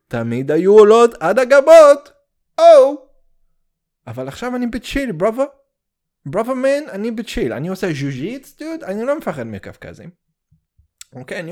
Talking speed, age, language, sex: 130 wpm, 20-39, English, male